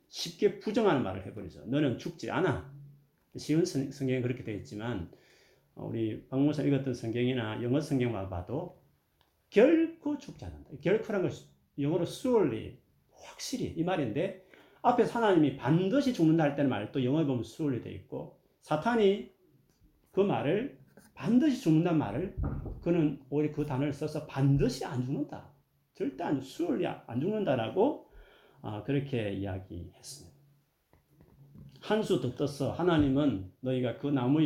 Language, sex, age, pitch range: Korean, male, 40-59, 125-160 Hz